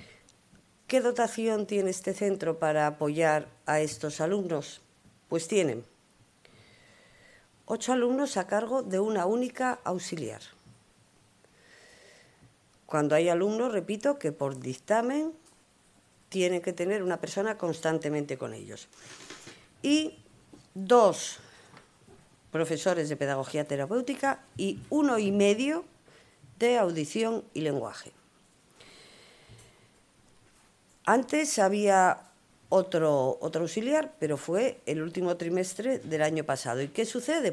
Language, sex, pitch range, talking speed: Spanish, female, 150-220 Hz, 105 wpm